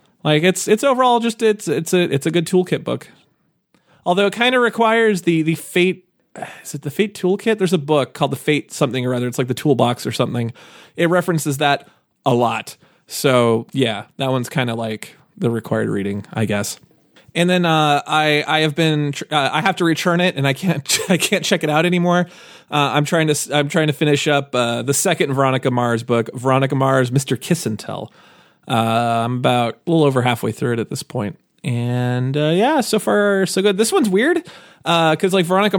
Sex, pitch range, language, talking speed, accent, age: male, 135-180 Hz, English, 215 wpm, American, 30-49